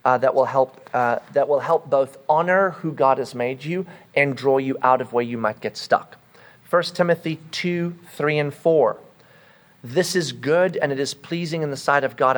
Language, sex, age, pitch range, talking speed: English, male, 40-59, 130-165 Hz, 210 wpm